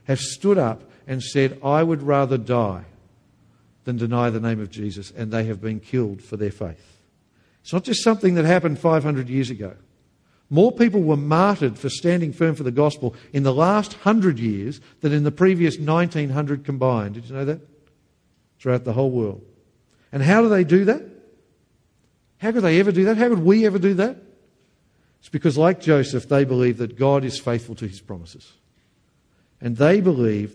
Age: 50-69